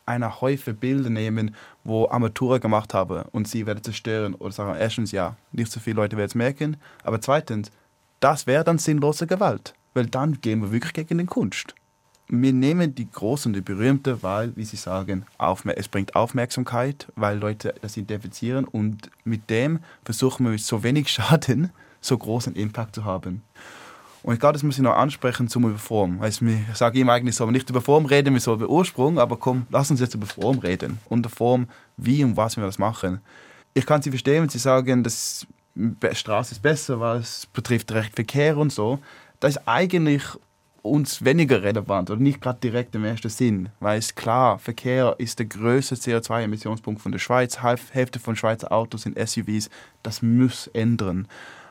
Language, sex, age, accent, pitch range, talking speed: German, male, 20-39, German, 110-130 Hz, 190 wpm